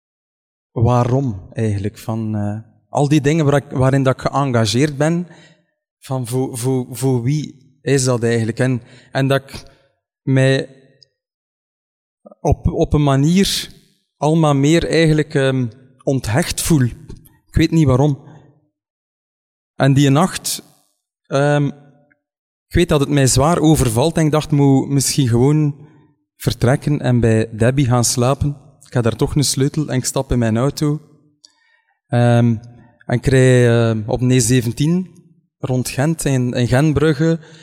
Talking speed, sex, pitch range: 145 wpm, male, 125-150 Hz